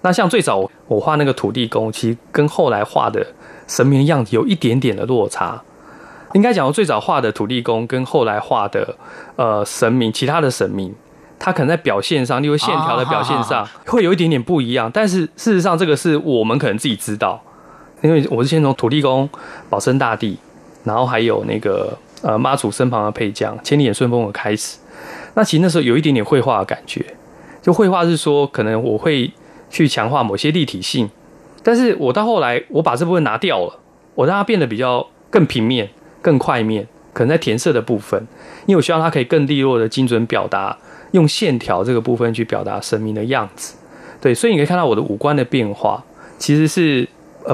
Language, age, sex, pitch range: Chinese, 20-39, male, 115-160 Hz